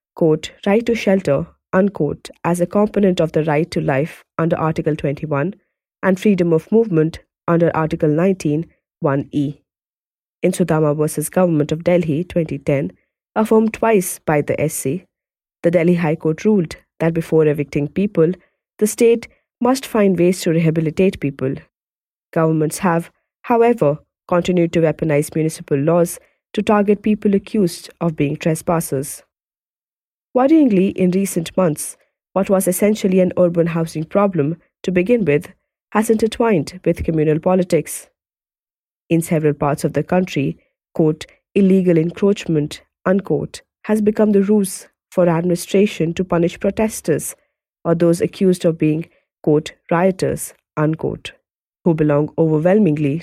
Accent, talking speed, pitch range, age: Indian, 130 wpm, 155-190 Hz, 30-49